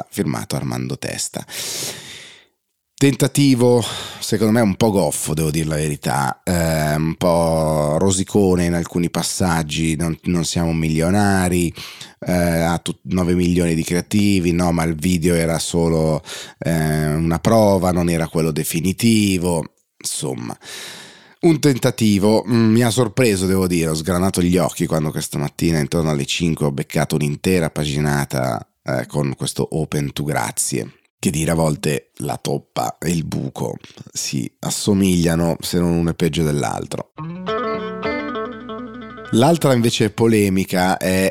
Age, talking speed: 30-49, 135 wpm